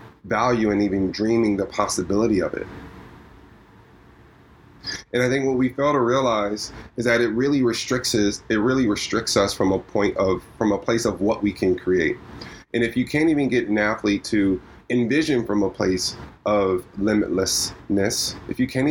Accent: American